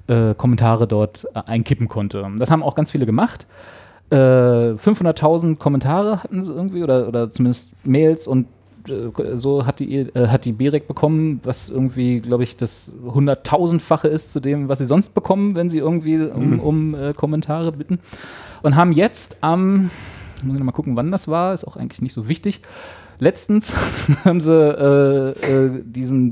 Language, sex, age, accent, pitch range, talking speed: German, male, 30-49, German, 115-155 Hz, 170 wpm